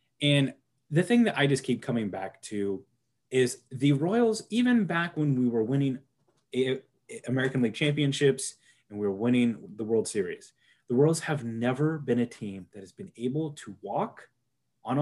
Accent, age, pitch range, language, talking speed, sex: American, 30-49, 120-150 Hz, English, 170 wpm, male